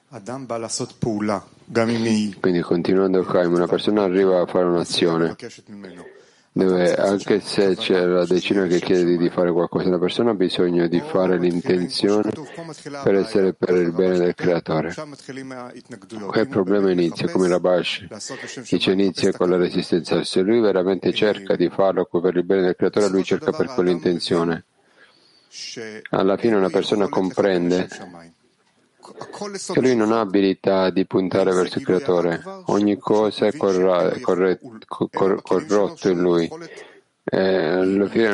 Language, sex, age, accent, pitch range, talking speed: Italian, male, 50-69, native, 90-110 Hz, 135 wpm